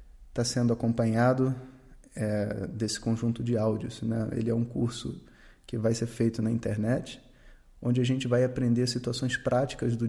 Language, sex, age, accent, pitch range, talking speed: Portuguese, male, 20-39, Brazilian, 115-125 Hz, 160 wpm